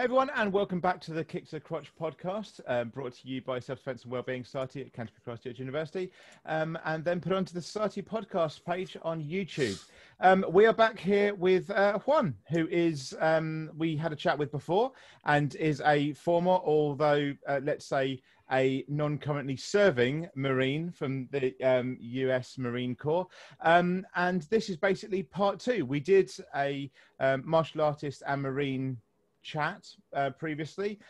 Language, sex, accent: English, male, British